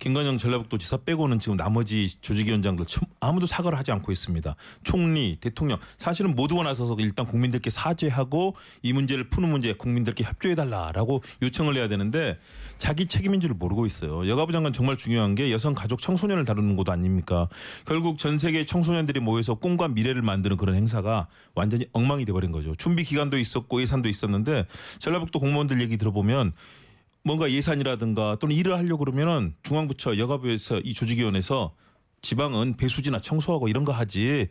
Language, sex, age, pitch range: Korean, male, 30-49, 105-145 Hz